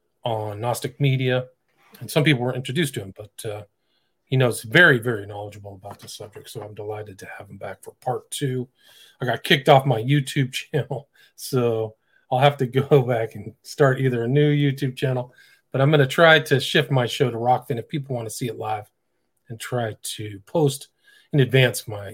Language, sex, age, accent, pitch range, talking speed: English, male, 40-59, American, 110-140 Hz, 205 wpm